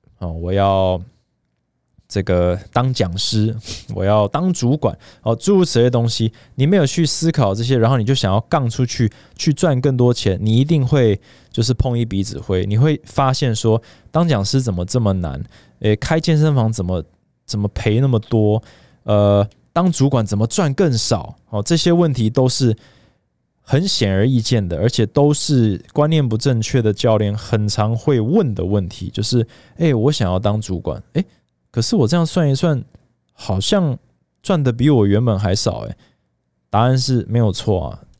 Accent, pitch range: native, 105-135 Hz